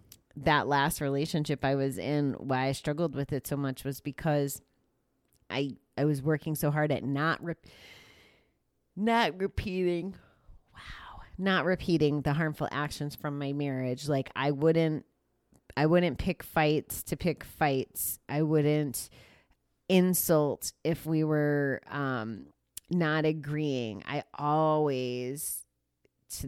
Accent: American